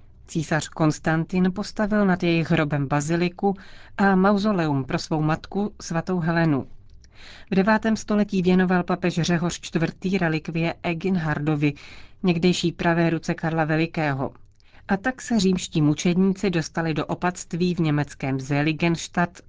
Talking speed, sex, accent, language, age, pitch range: 120 wpm, female, native, Czech, 40-59, 155-185 Hz